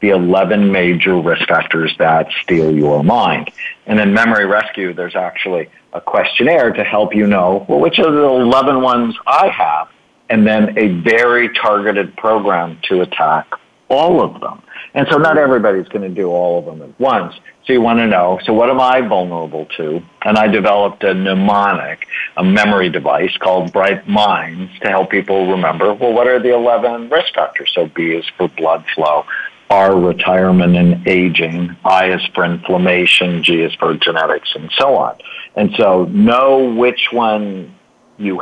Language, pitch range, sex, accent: English, 90-115 Hz, male, American